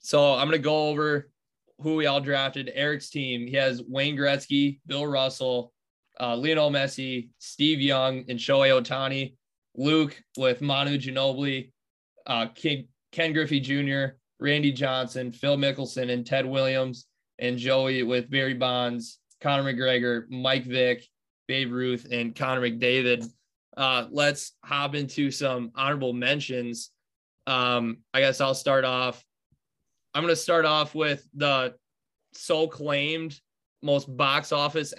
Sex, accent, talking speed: male, American, 140 wpm